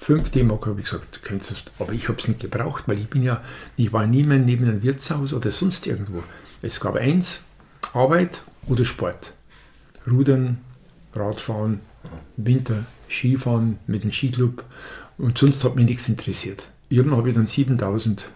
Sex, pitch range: male, 105-140 Hz